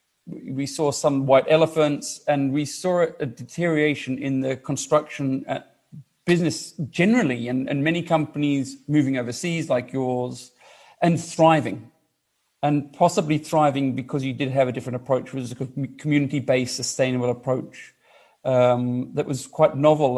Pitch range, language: 130-160 Hz, English